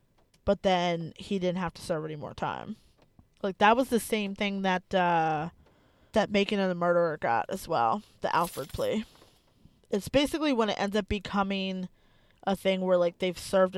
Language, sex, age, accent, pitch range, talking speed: English, female, 20-39, American, 175-210 Hz, 185 wpm